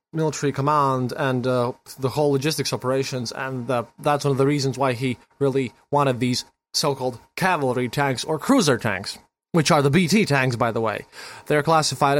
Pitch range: 135-185 Hz